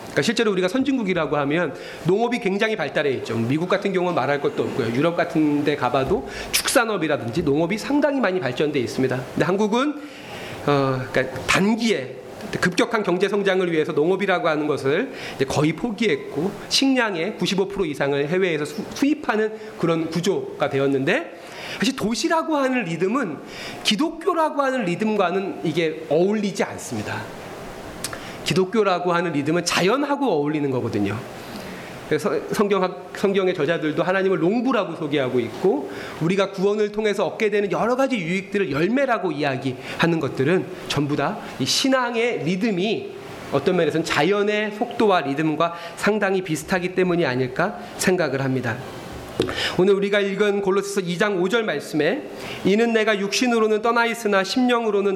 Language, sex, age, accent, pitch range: Korean, male, 40-59, native, 155-220 Hz